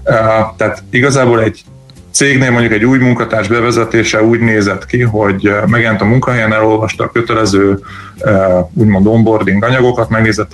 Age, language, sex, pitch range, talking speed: 30-49, Hungarian, male, 95-115 Hz, 130 wpm